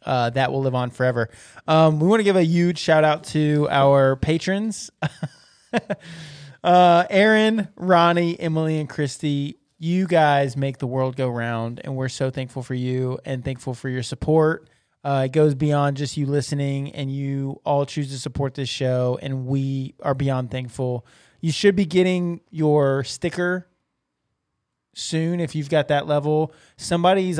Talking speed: 165 wpm